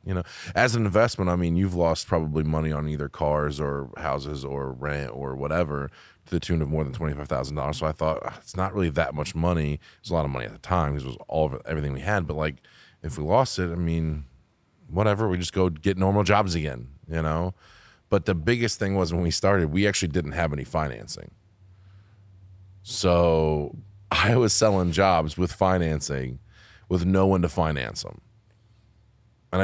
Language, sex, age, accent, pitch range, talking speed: English, male, 20-39, American, 75-95 Hz, 200 wpm